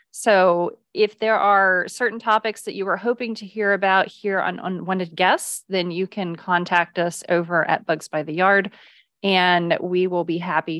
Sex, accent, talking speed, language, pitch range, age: female, American, 185 wpm, English, 180-220 Hz, 30-49